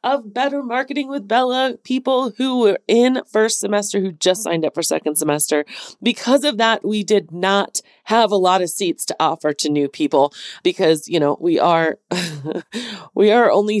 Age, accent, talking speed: 30-49, American, 185 wpm